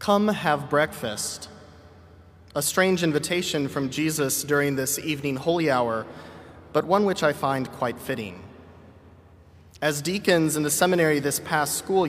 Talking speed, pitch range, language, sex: 140 wpm, 125-160 Hz, English, male